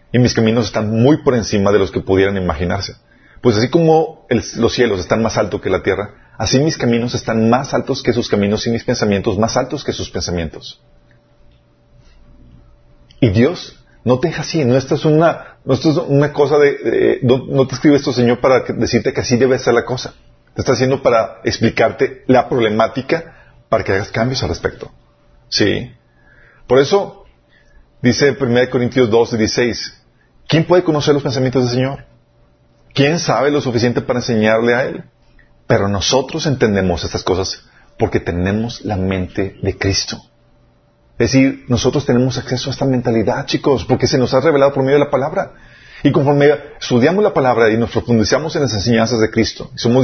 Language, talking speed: Spanish, 180 wpm